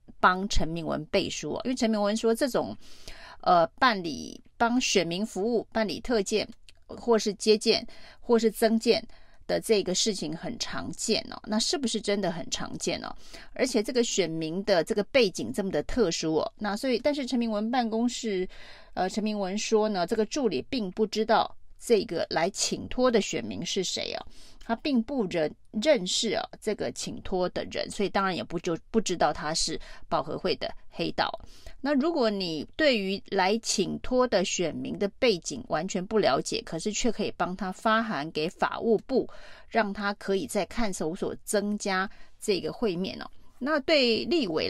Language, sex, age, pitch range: Chinese, female, 30-49, 190-230 Hz